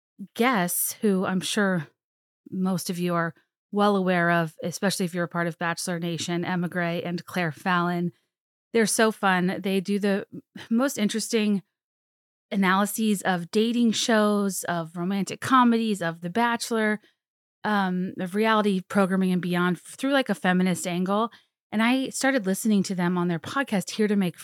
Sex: female